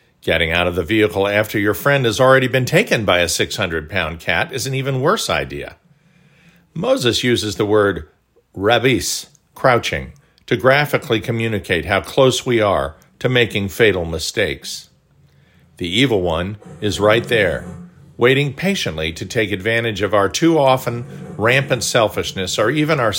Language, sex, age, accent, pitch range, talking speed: English, male, 50-69, American, 105-135 Hz, 145 wpm